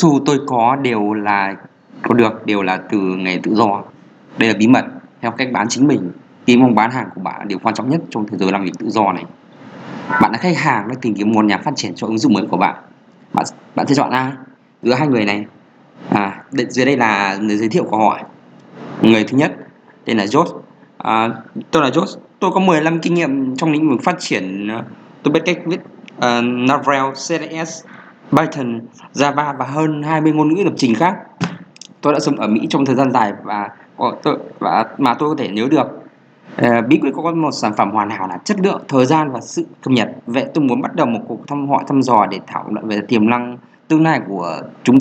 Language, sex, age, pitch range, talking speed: Vietnamese, male, 20-39, 110-155 Hz, 225 wpm